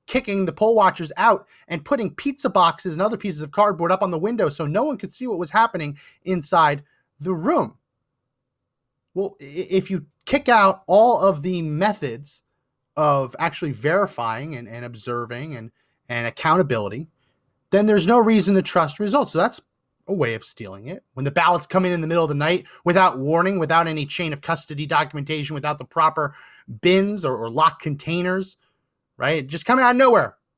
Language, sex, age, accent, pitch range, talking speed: English, male, 30-49, American, 145-195 Hz, 185 wpm